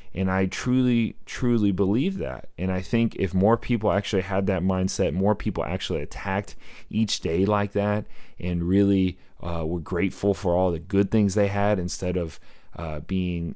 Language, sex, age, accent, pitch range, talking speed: English, male, 30-49, American, 90-100 Hz, 175 wpm